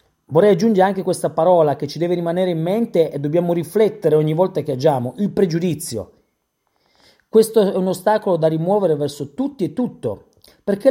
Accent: native